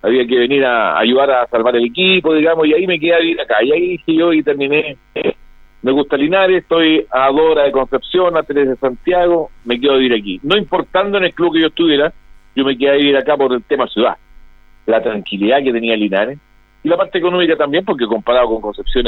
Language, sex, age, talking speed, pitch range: Spanish, male, 50-69, 225 wpm, 115-150 Hz